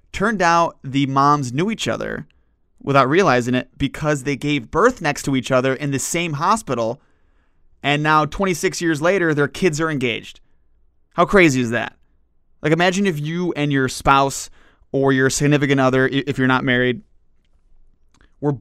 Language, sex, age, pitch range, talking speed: English, male, 20-39, 115-150 Hz, 165 wpm